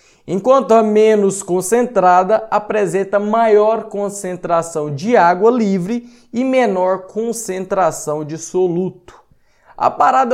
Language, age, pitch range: Portuguese, 20-39, 160-225 Hz